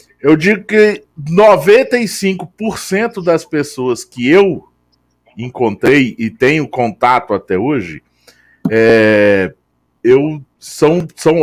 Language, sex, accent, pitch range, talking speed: Portuguese, male, Brazilian, 110-155 Hz, 95 wpm